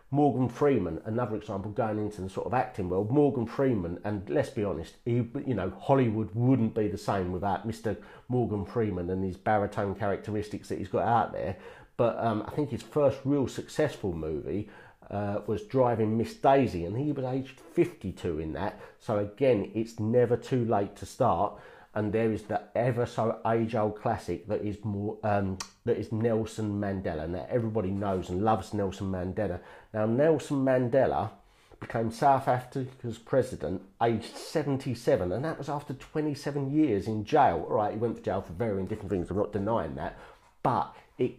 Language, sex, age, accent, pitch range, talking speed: English, male, 40-59, British, 100-130 Hz, 180 wpm